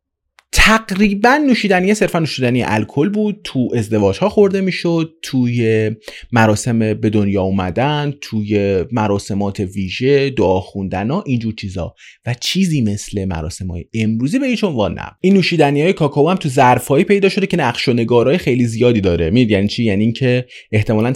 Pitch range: 100-140 Hz